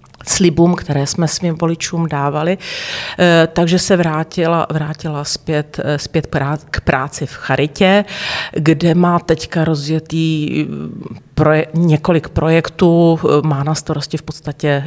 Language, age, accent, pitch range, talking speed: Czech, 40-59, native, 145-165 Hz, 115 wpm